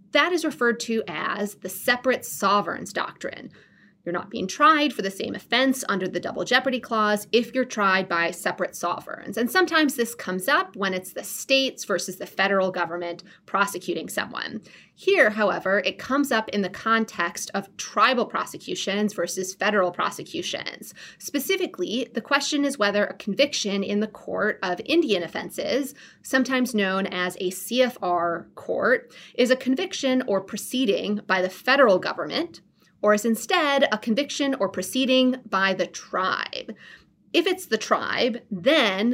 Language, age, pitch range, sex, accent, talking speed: English, 30-49, 185-255 Hz, female, American, 155 wpm